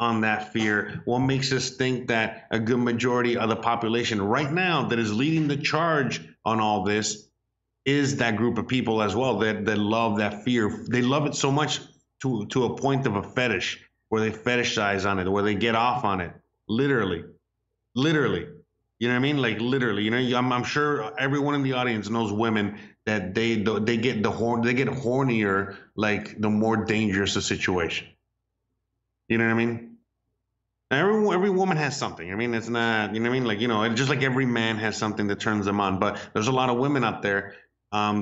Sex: male